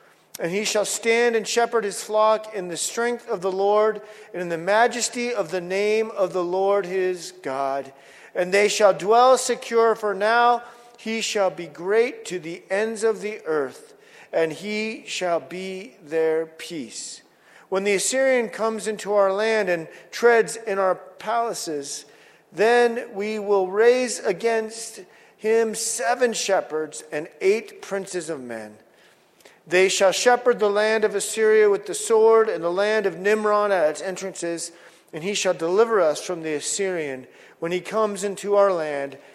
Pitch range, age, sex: 170-225 Hz, 40-59, male